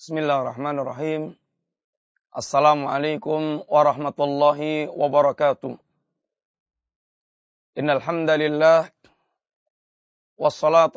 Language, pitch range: Malay, 155-175 Hz